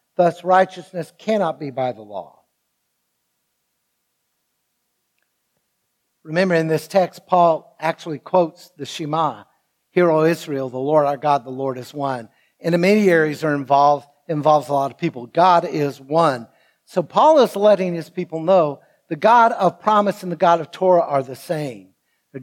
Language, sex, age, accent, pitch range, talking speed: English, male, 60-79, American, 145-190 Hz, 165 wpm